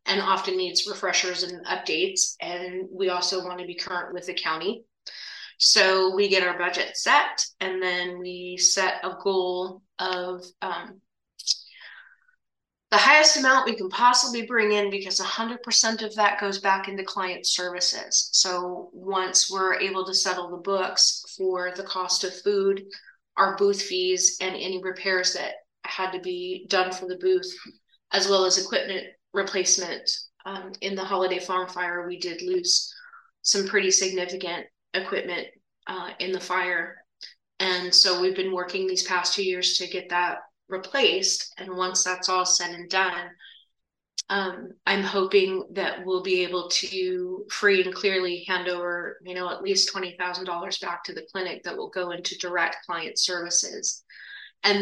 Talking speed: 160 wpm